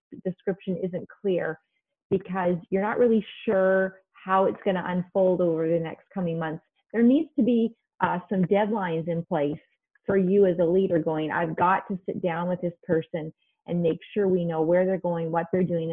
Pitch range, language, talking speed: 170-200 Hz, English, 195 wpm